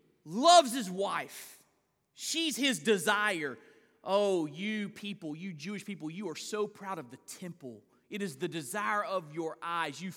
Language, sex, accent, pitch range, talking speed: English, male, American, 185-265 Hz, 160 wpm